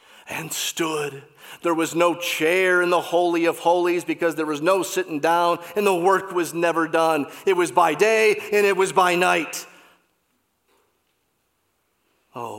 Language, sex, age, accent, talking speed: English, male, 40-59, American, 155 wpm